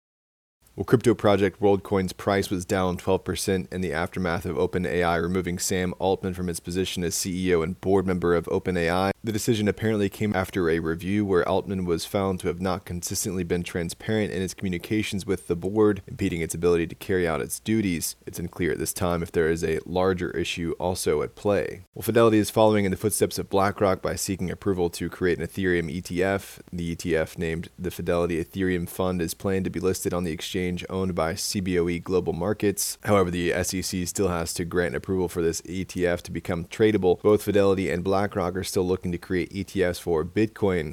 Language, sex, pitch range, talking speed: English, male, 85-100 Hz, 195 wpm